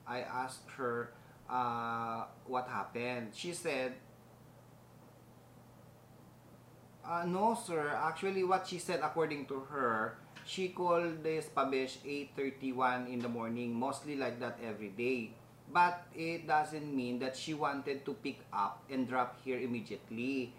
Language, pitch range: Filipino, 125-150 Hz